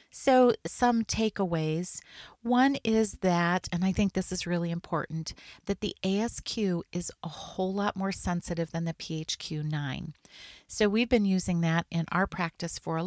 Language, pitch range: English, 165-205 Hz